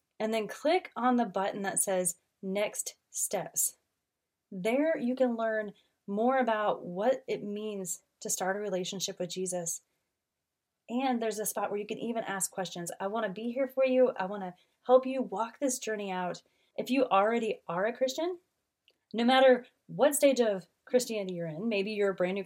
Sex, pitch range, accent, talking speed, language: female, 190-255 Hz, American, 185 wpm, English